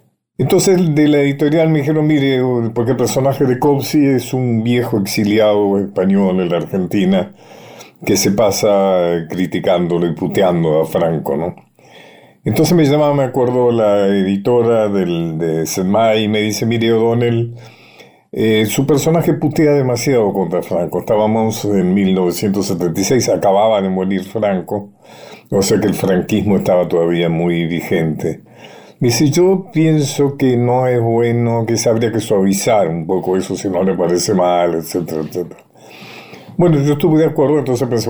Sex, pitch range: male, 95-145 Hz